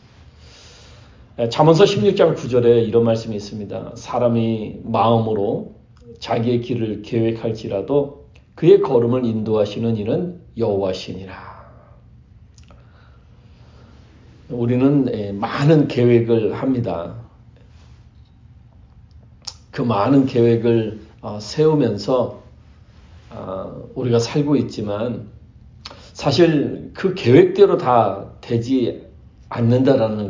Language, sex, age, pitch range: Korean, male, 40-59, 110-135 Hz